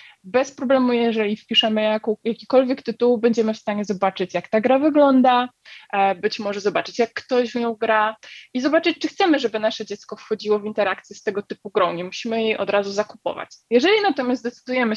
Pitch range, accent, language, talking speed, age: 200-245 Hz, native, Polish, 180 wpm, 20-39